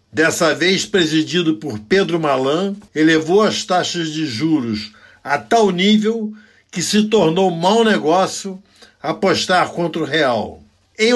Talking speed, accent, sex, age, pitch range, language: 130 wpm, Brazilian, male, 60-79, 150-195 Hz, Portuguese